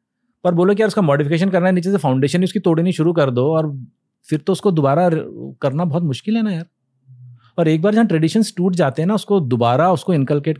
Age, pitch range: 40-59, 125-185 Hz